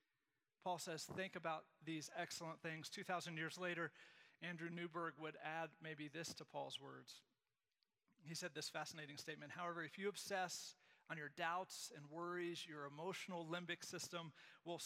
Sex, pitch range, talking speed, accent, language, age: male, 155-185 Hz, 155 wpm, American, English, 40-59